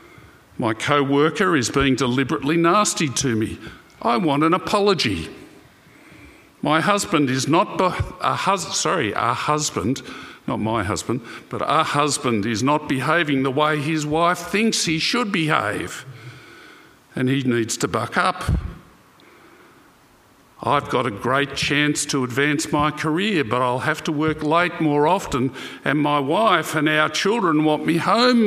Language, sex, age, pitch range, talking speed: English, male, 50-69, 140-175 Hz, 145 wpm